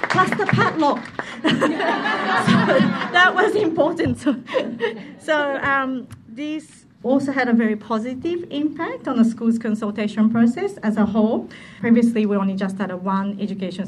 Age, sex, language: 40-59, female, English